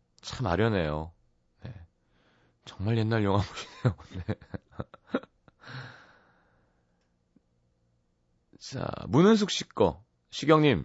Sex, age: male, 30-49